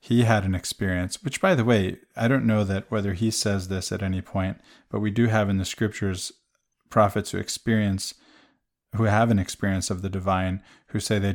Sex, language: male, English